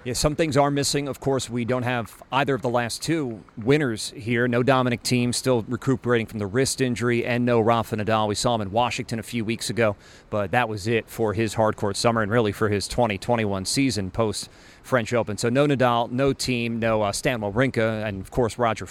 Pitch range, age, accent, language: 105-130 Hz, 40-59, American, English